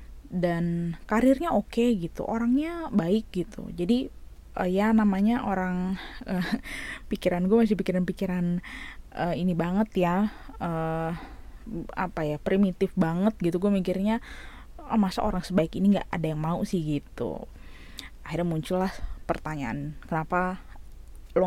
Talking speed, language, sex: 130 wpm, Indonesian, female